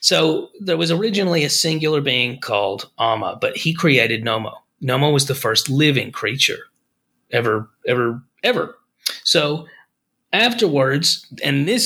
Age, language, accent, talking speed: 30-49, English, American, 130 wpm